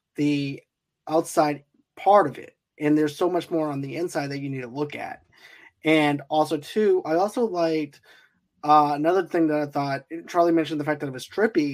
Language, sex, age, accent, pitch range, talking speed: English, male, 20-39, American, 145-165 Hz, 200 wpm